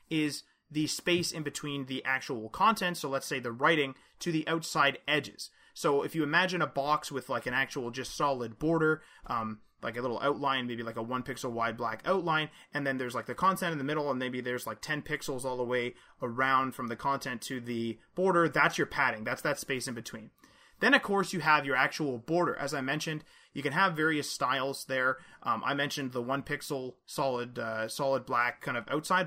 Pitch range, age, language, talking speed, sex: 125-155 Hz, 30-49, English, 215 wpm, male